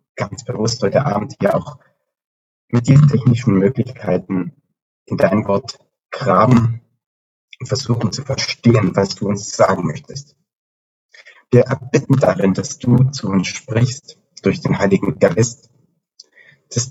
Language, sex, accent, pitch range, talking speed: German, male, German, 110-130 Hz, 130 wpm